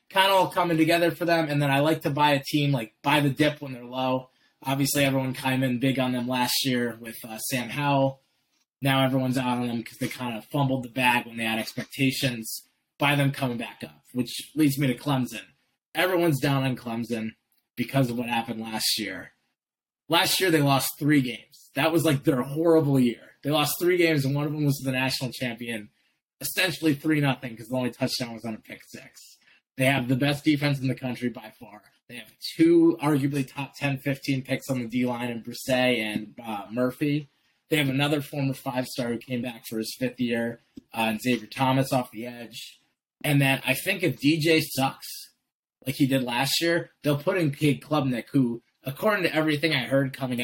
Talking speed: 210 wpm